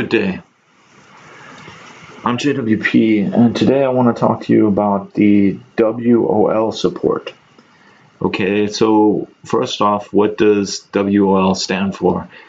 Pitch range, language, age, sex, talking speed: 100-115 Hz, English, 30-49, male, 115 wpm